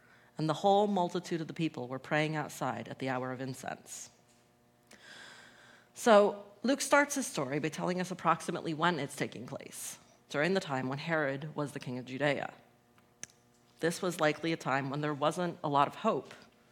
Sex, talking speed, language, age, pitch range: female, 180 wpm, English, 40-59, 135-175 Hz